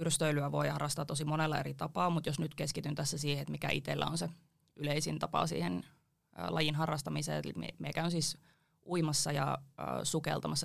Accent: native